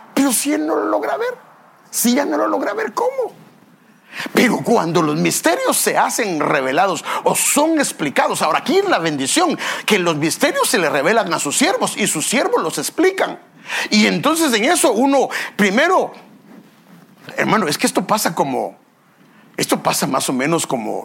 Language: English